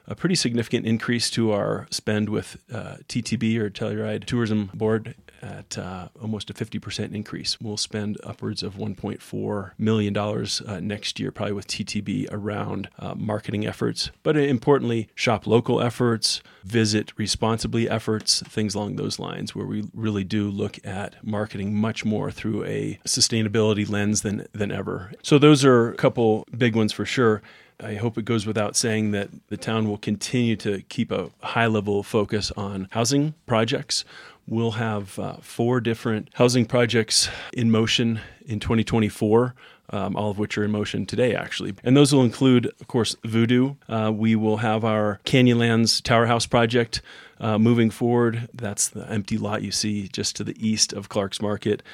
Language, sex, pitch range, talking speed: English, male, 105-120 Hz, 170 wpm